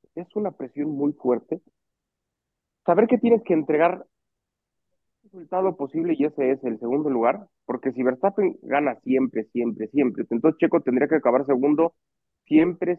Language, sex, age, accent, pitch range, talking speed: Spanish, male, 30-49, Mexican, 125-190 Hz, 150 wpm